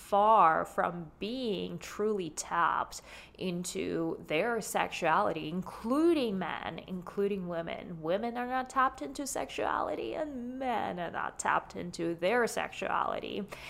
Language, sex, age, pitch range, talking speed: English, female, 20-39, 180-235 Hz, 115 wpm